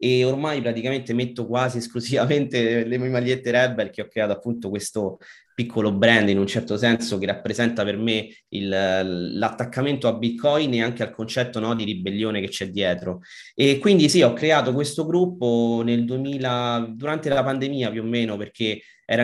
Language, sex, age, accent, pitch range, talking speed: Italian, male, 30-49, native, 110-130 Hz, 170 wpm